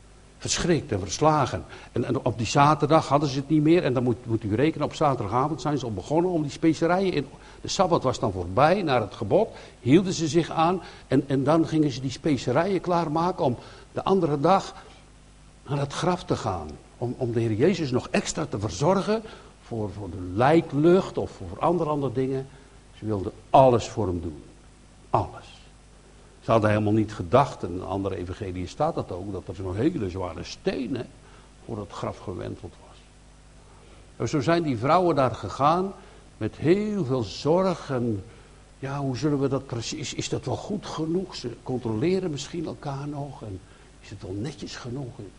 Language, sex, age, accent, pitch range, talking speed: Dutch, male, 60-79, Dutch, 110-155 Hz, 185 wpm